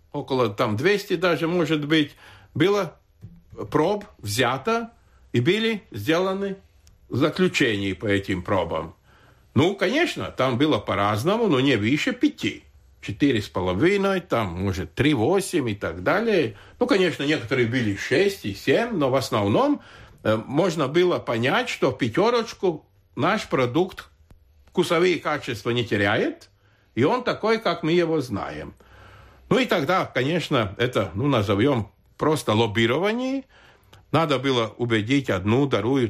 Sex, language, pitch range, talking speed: male, Russian, 100-165 Hz, 130 wpm